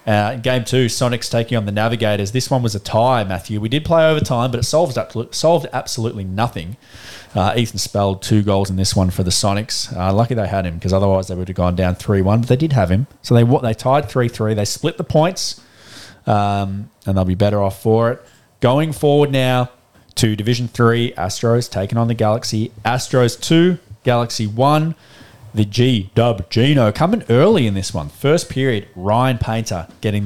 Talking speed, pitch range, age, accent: 200 wpm, 100-130 Hz, 20-39, Australian